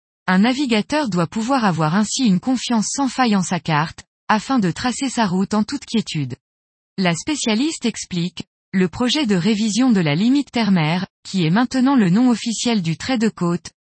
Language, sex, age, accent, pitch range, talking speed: French, female, 20-39, French, 175-240 Hz, 180 wpm